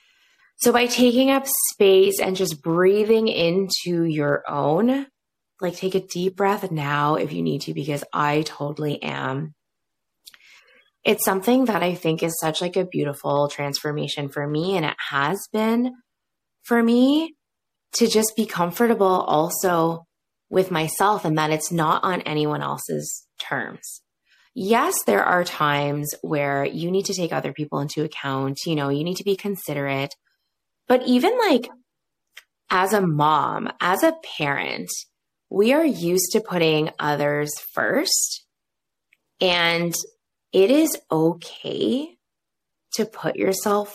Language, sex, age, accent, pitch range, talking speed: English, female, 20-39, American, 150-215 Hz, 140 wpm